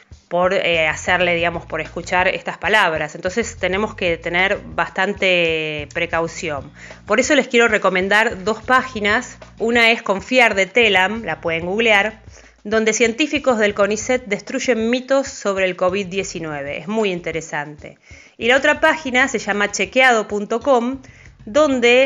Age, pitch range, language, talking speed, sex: 20-39, 180-230 Hz, Spanish, 135 wpm, female